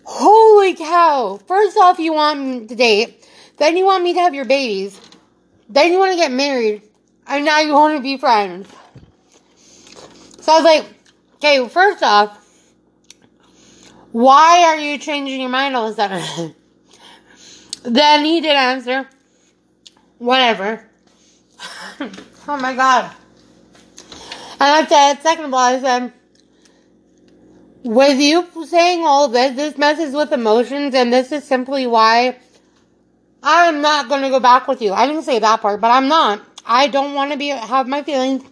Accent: American